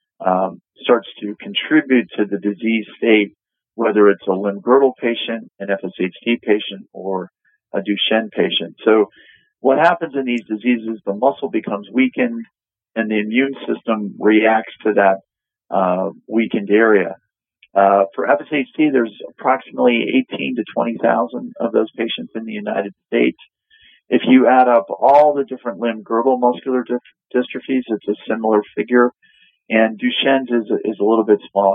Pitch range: 105-125 Hz